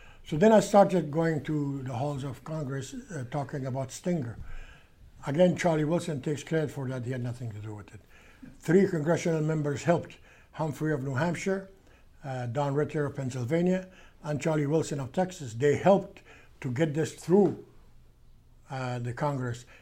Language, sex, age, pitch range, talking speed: English, male, 60-79, 125-155 Hz, 165 wpm